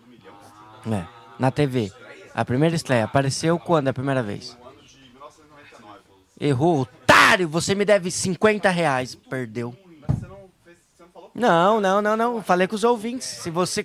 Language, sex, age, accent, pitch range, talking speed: Portuguese, male, 20-39, Brazilian, 135-200 Hz, 125 wpm